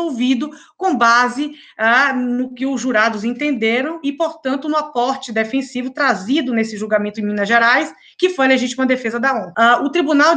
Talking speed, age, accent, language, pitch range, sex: 175 wpm, 20-39, Brazilian, Portuguese, 220-290 Hz, female